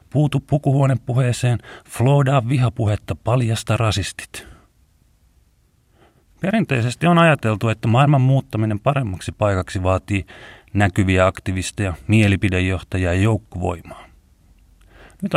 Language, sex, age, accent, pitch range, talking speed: Finnish, male, 30-49, native, 90-125 Hz, 80 wpm